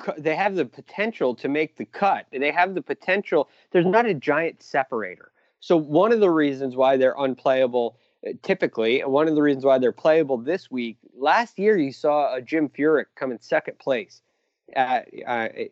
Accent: American